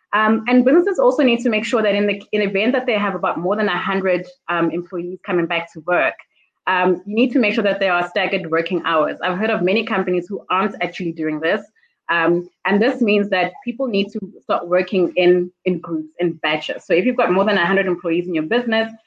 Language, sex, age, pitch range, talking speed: English, female, 20-39, 170-210 Hz, 225 wpm